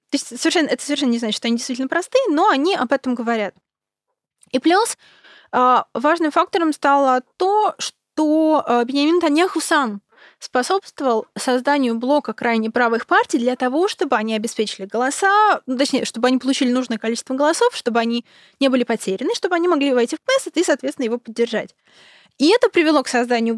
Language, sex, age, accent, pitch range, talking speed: Russian, female, 20-39, native, 235-315 Hz, 165 wpm